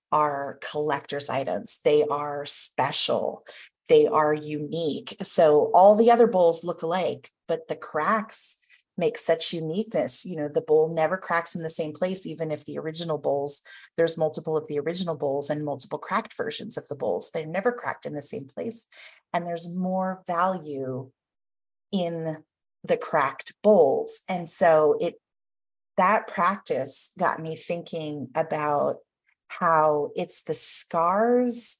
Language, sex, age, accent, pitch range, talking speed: English, female, 30-49, American, 145-180 Hz, 145 wpm